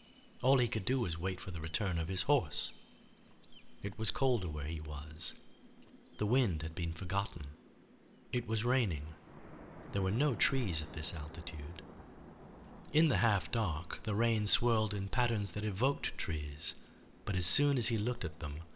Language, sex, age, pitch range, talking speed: English, male, 50-69, 80-115 Hz, 165 wpm